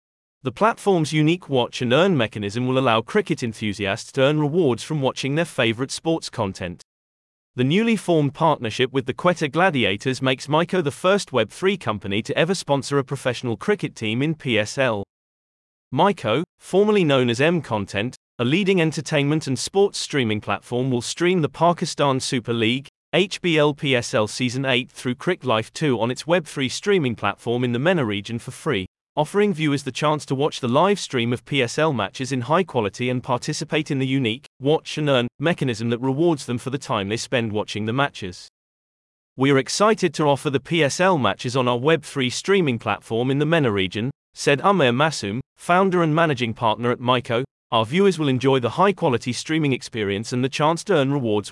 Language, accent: English, British